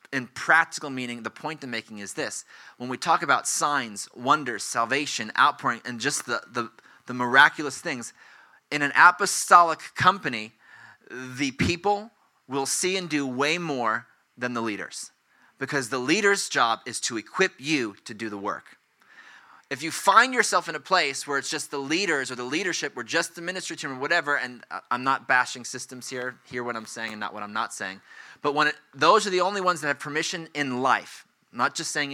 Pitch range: 125-155 Hz